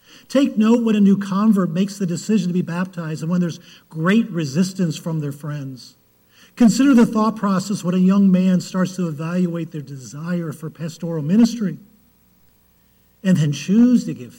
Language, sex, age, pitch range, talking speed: English, male, 50-69, 115-195 Hz, 170 wpm